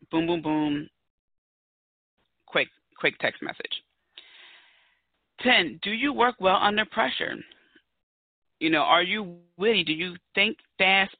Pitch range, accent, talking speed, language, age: 155-205 Hz, American, 125 wpm, English, 30-49